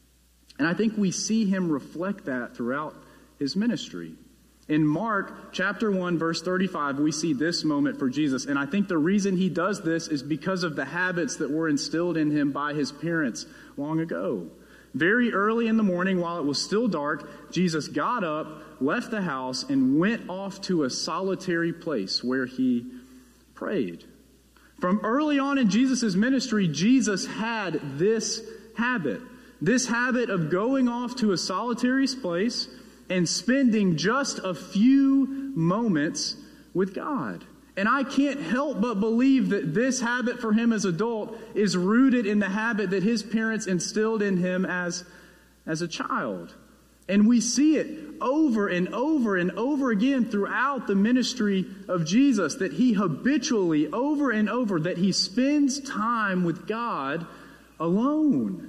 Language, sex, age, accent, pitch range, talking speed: English, male, 30-49, American, 170-240 Hz, 160 wpm